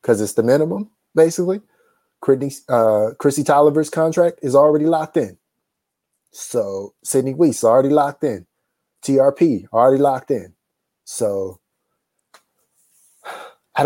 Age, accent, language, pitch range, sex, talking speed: 30-49, American, English, 120-155 Hz, male, 110 wpm